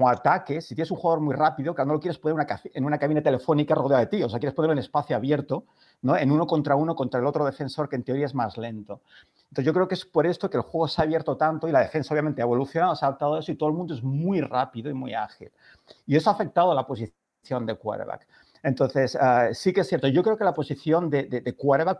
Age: 50-69